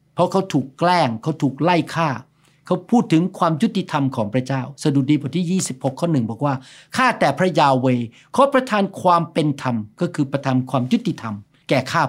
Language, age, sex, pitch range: Thai, 60-79, male, 140-190 Hz